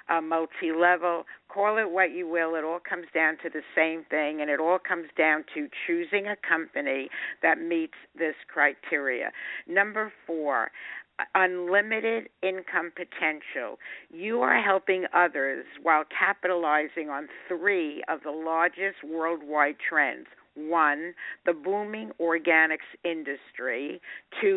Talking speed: 125 wpm